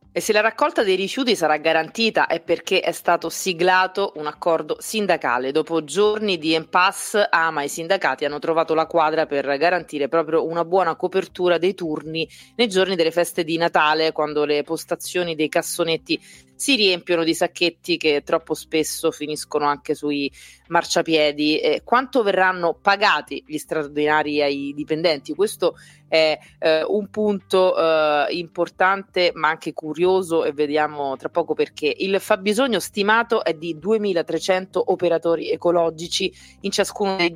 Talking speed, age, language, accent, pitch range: 145 wpm, 30-49, Italian, native, 155-190 Hz